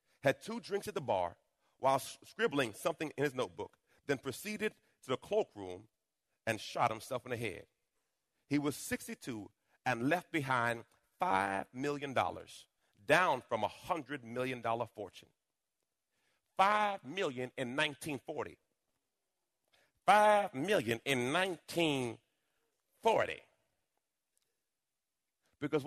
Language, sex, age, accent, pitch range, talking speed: English, male, 40-59, American, 130-205 Hz, 110 wpm